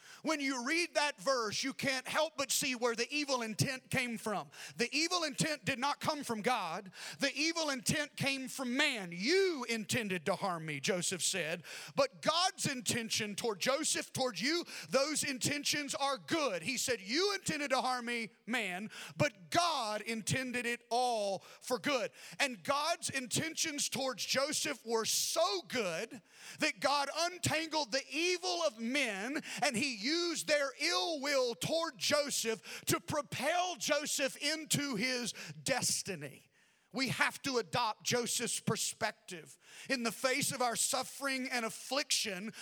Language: English